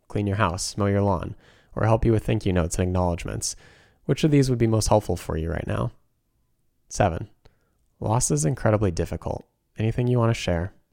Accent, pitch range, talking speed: American, 85-115 Hz, 200 wpm